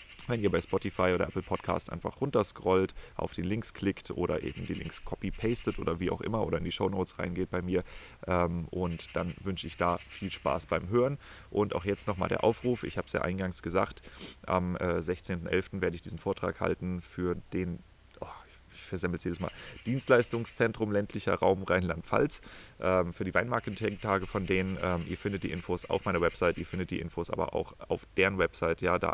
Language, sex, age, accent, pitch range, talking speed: German, male, 30-49, German, 85-100 Hz, 190 wpm